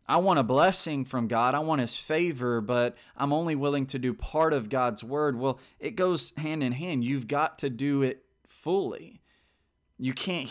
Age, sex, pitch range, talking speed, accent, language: 20-39, male, 115-140 Hz, 195 wpm, American, English